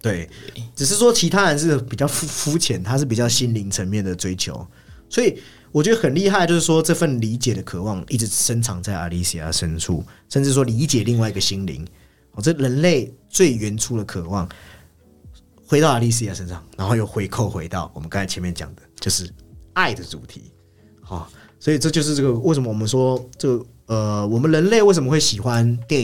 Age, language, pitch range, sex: 30-49, Chinese, 95-130 Hz, male